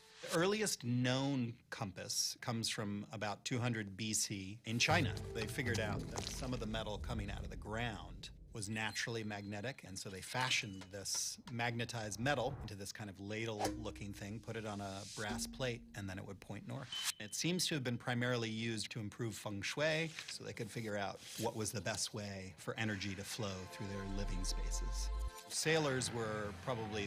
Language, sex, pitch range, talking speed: English, male, 100-120 Hz, 185 wpm